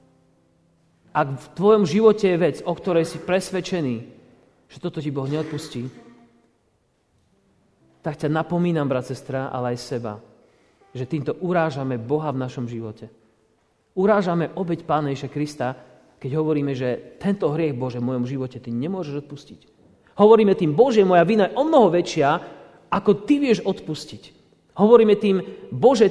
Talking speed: 140 wpm